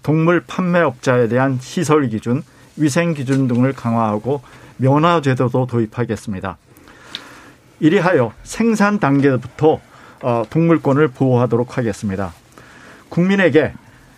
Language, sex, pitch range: Korean, male, 125-160 Hz